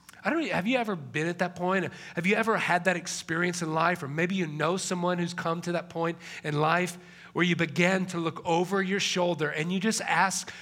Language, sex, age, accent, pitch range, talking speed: English, male, 40-59, American, 160-190 Hz, 220 wpm